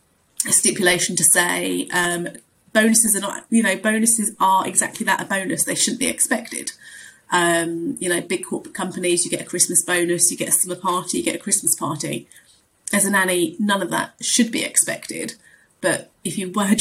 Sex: female